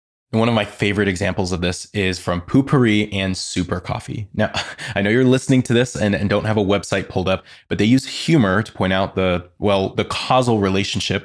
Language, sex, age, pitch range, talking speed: English, male, 20-39, 95-130 Hz, 220 wpm